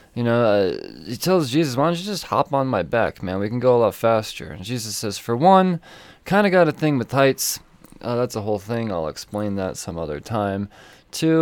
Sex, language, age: male, English, 20-39